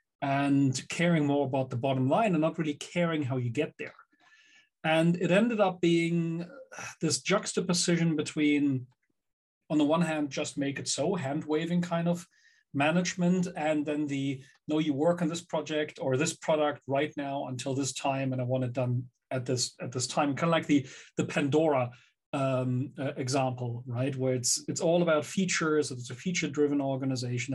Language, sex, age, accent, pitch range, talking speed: English, male, 40-59, German, 135-165 Hz, 180 wpm